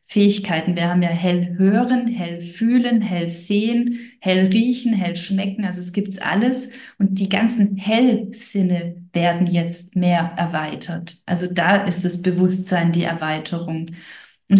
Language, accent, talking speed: German, German, 145 wpm